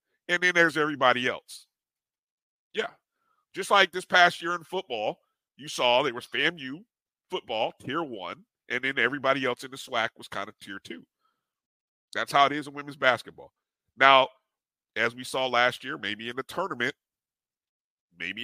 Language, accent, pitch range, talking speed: English, American, 115-155 Hz, 165 wpm